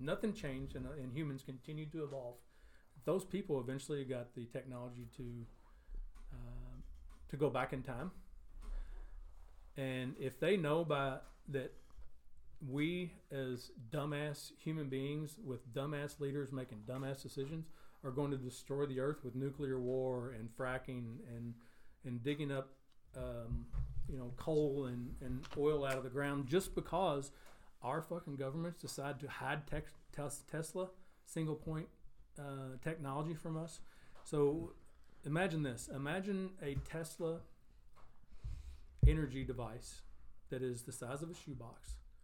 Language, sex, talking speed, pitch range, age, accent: English, male, 135 wpm, 125-155 Hz, 40-59, American